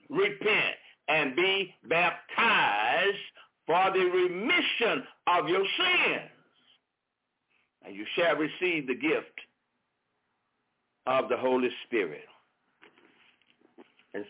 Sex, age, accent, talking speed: male, 60-79, American, 90 wpm